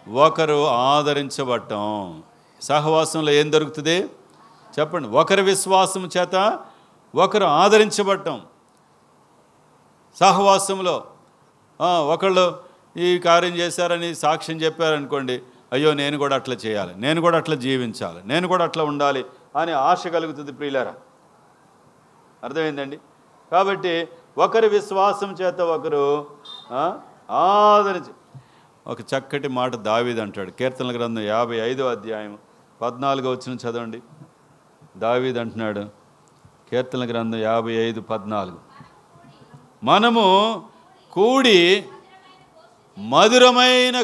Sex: male